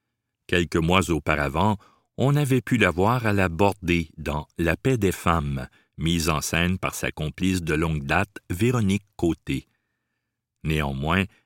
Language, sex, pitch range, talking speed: French, male, 80-115 Hz, 145 wpm